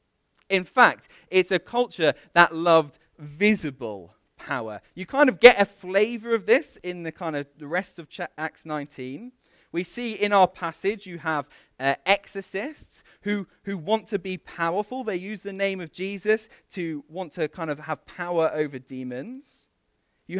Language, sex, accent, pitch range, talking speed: English, male, British, 160-215 Hz, 170 wpm